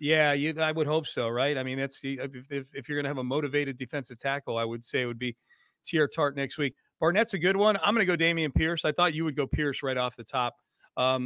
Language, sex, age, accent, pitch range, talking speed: English, male, 40-59, American, 140-170 Hz, 280 wpm